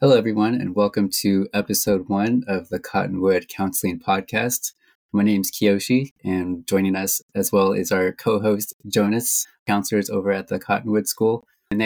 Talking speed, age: 160 wpm, 20-39